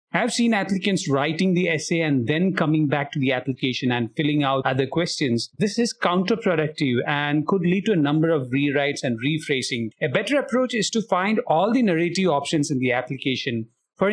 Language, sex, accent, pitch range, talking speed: English, male, Indian, 135-175 Hz, 195 wpm